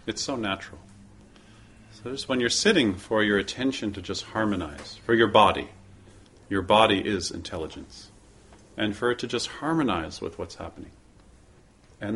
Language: English